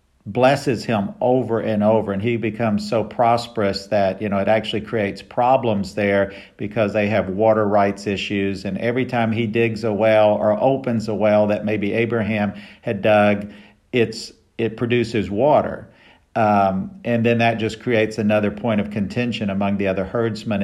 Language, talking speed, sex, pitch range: English, 170 wpm, male, 100-115 Hz